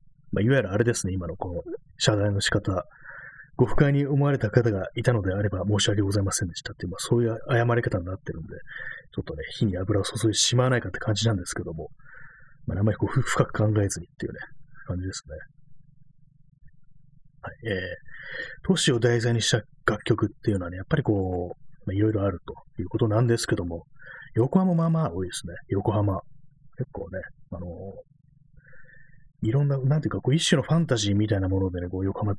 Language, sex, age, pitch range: Japanese, male, 30-49, 100-140 Hz